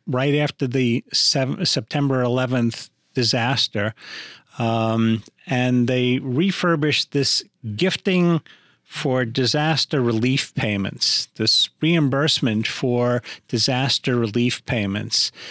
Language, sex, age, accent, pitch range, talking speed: English, male, 50-69, American, 125-150 Hz, 90 wpm